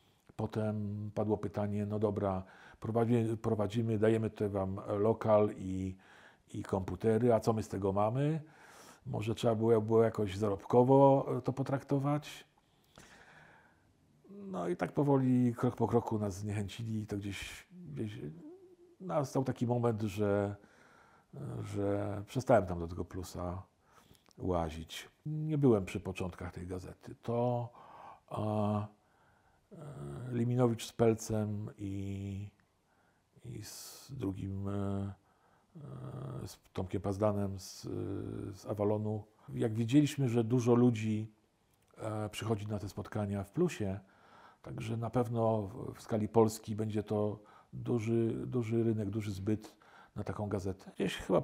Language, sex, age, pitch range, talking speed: Polish, male, 50-69, 100-120 Hz, 115 wpm